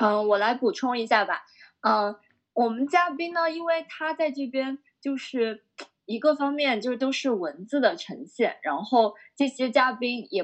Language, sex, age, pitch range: Chinese, female, 20-39, 195-265 Hz